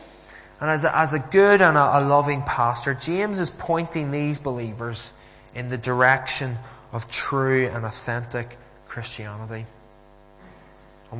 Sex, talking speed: male, 130 wpm